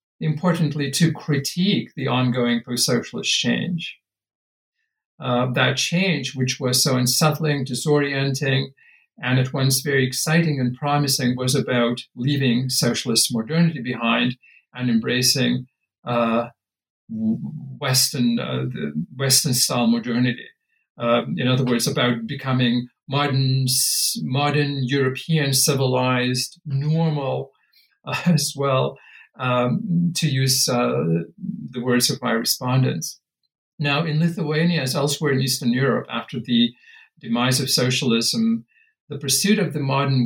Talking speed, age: 115 wpm, 50-69